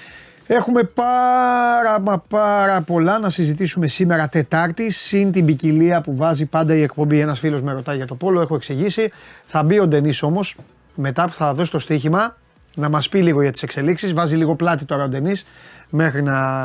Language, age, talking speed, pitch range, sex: Greek, 30-49, 185 wpm, 145-190 Hz, male